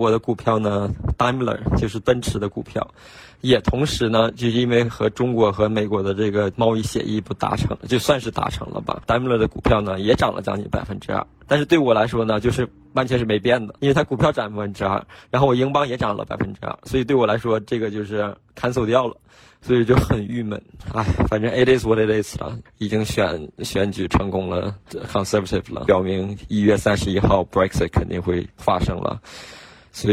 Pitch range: 100-115 Hz